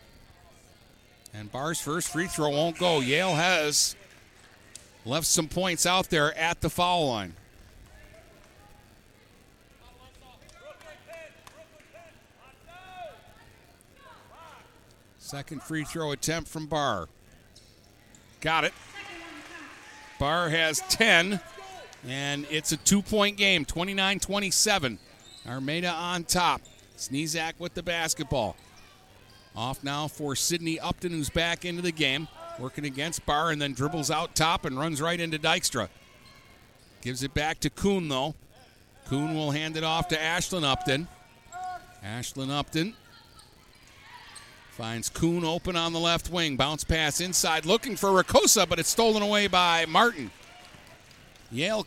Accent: American